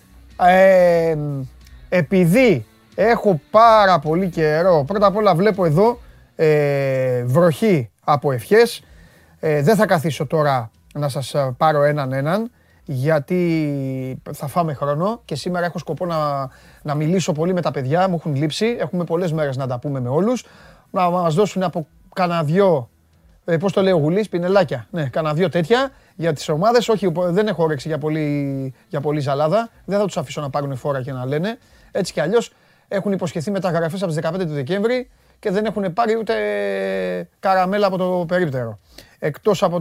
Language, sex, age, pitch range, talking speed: Greek, male, 30-49, 145-195 Hz, 165 wpm